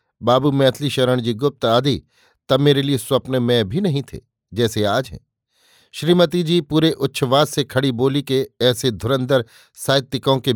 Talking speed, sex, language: 165 wpm, male, Hindi